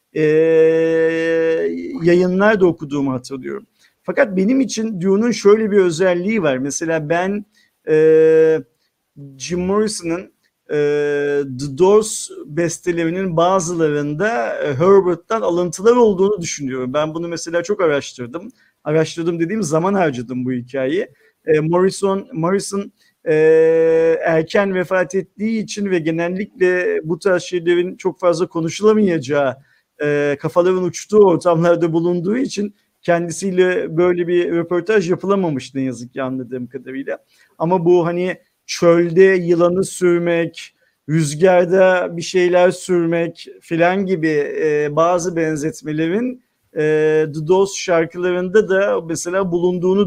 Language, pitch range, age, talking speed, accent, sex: Turkish, 160-190 Hz, 50-69, 105 wpm, native, male